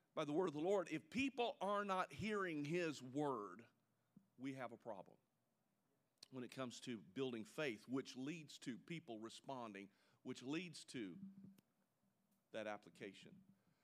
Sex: male